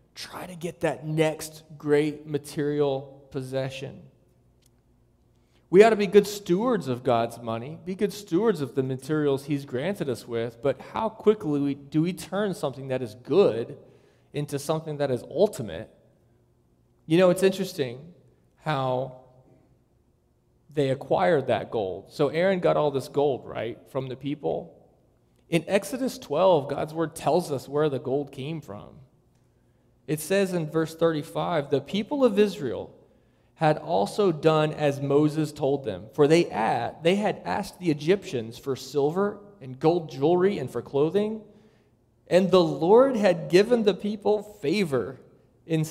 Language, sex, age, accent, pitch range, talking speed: English, male, 30-49, American, 135-185 Hz, 145 wpm